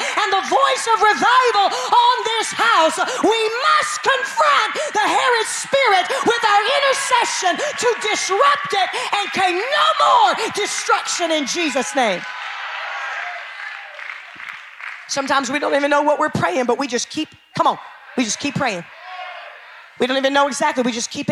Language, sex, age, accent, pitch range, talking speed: English, female, 40-59, American, 250-325 Hz, 150 wpm